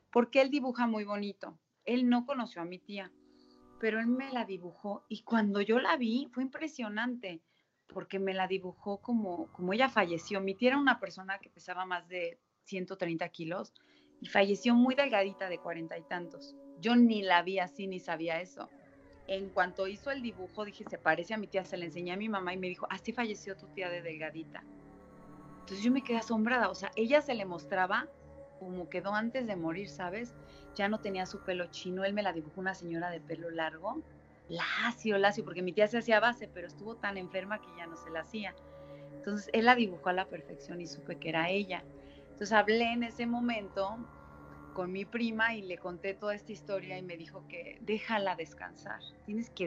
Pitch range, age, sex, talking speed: 175-220 Hz, 30-49, female, 205 wpm